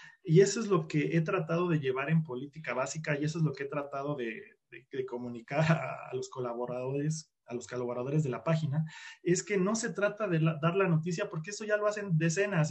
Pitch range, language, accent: 140-175 Hz, Spanish, Mexican